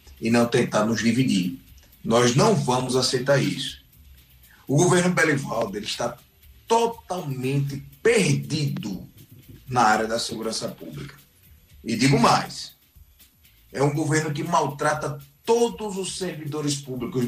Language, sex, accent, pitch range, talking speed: Portuguese, male, Brazilian, 110-145 Hz, 120 wpm